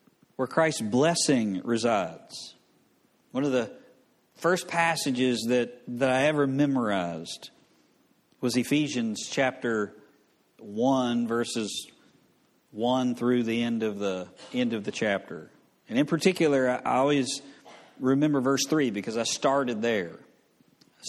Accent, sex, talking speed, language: American, male, 115 wpm, English